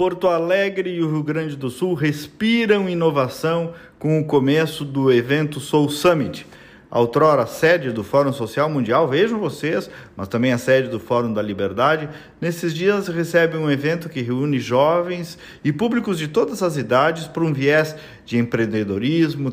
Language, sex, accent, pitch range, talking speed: Portuguese, male, Brazilian, 130-185 Hz, 160 wpm